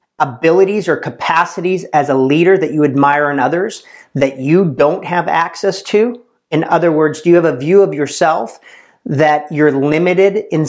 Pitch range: 155-195 Hz